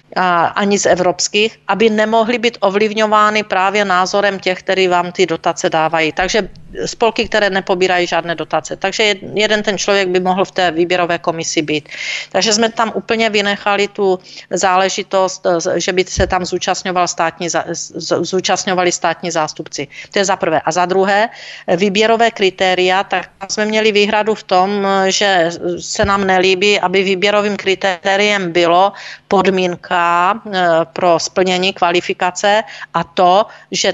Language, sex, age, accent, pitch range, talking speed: Czech, female, 40-59, native, 180-210 Hz, 135 wpm